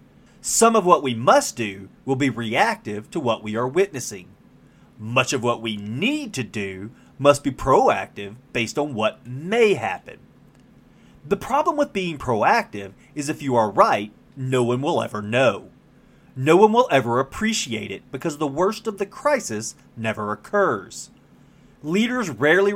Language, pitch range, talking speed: English, 115-170 Hz, 160 wpm